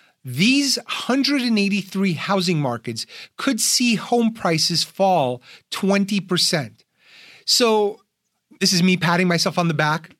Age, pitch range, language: 30-49, 155-195 Hz, English